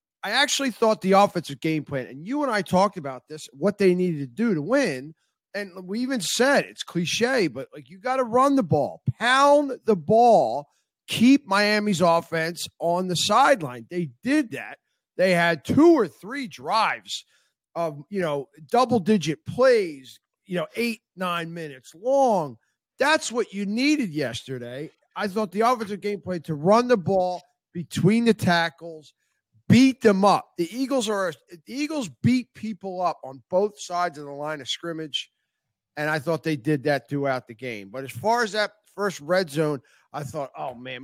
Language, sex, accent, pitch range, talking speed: English, male, American, 150-215 Hz, 180 wpm